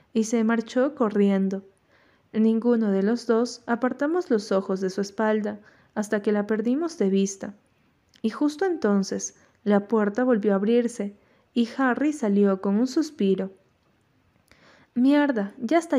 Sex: female